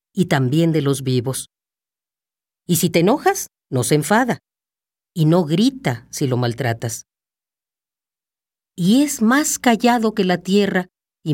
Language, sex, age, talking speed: Spanish, female, 40-59, 140 wpm